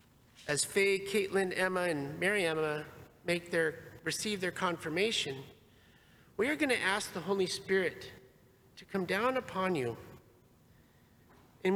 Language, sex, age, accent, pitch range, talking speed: English, male, 50-69, American, 165-210 Hz, 135 wpm